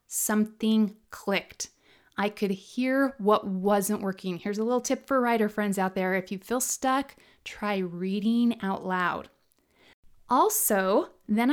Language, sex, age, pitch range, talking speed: English, female, 30-49, 195-250 Hz, 140 wpm